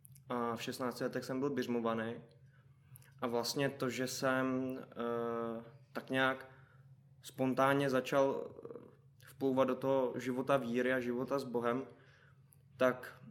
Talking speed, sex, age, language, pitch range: 120 wpm, male, 20-39, Czech, 120-135 Hz